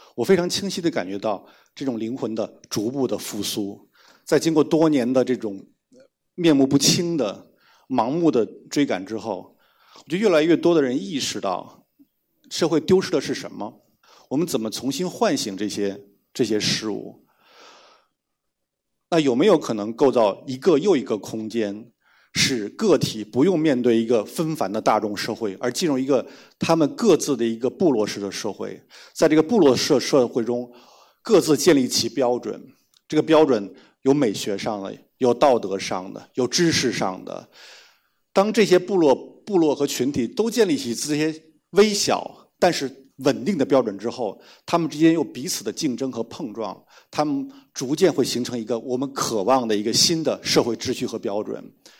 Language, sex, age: Chinese, male, 50-69